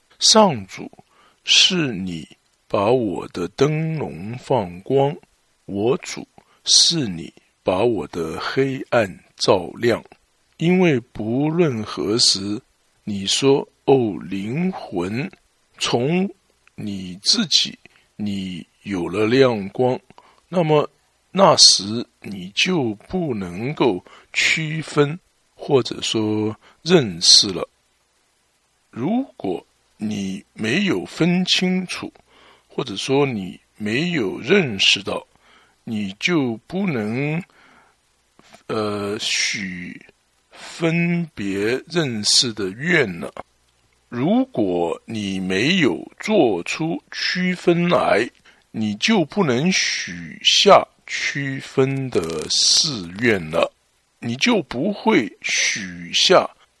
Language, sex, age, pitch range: English, male, 60-79, 105-175 Hz